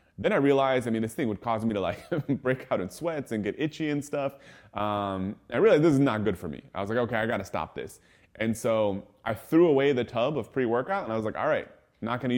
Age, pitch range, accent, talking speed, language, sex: 30-49, 105-135 Hz, American, 265 wpm, English, male